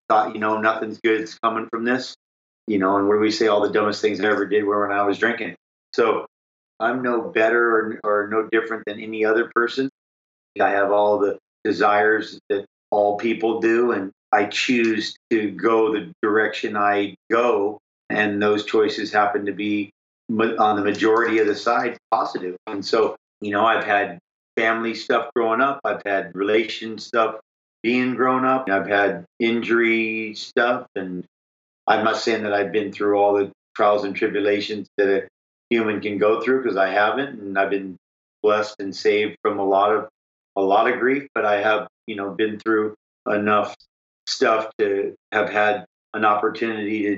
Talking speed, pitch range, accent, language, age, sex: 180 wpm, 100-110 Hz, American, English, 40-59, male